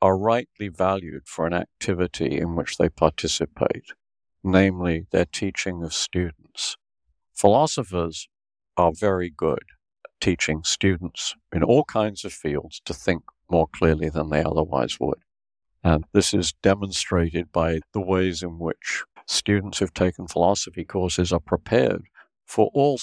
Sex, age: male, 60-79